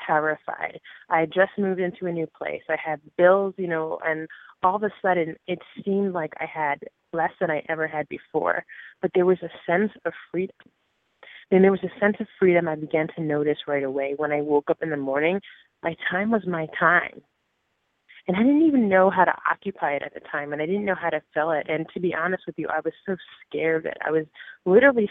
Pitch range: 155-185 Hz